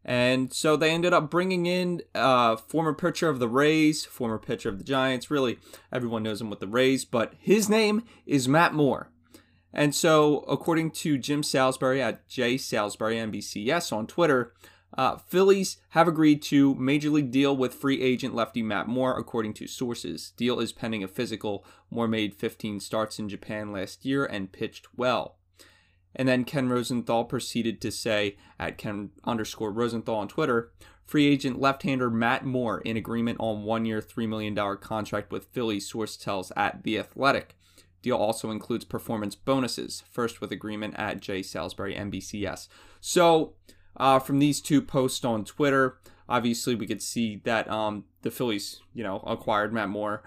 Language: English